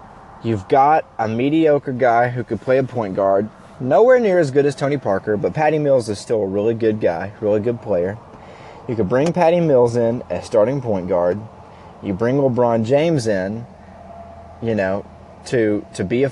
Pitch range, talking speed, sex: 100-125 Hz, 190 wpm, male